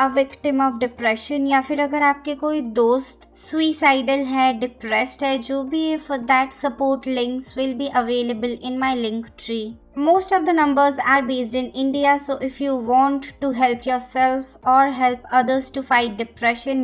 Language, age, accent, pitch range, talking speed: Hindi, 20-39, native, 240-280 Hz, 95 wpm